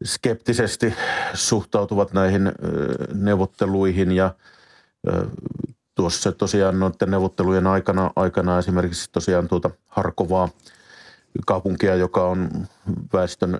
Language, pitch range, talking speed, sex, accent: Finnish, 85-95 Hz, 85 wpm, male, native